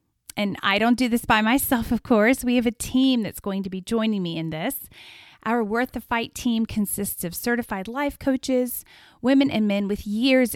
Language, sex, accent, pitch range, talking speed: English, female, American, 195-245 Hz, 205 wpm